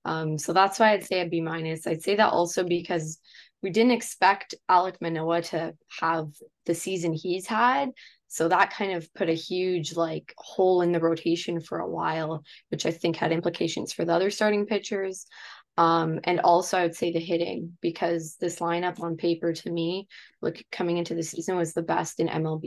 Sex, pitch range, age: female, 165-190 Hz, 20-39